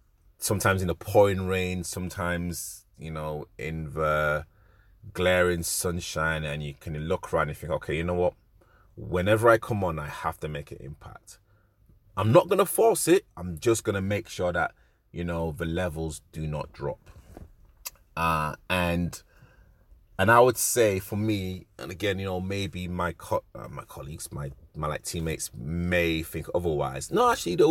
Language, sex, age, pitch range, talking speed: English, male, 30-49, 85-105 Hz, 170 wpm